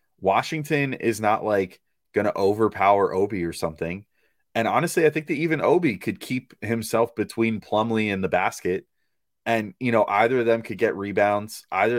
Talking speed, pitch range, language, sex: 175 wpm, 95-120 Hz, English, male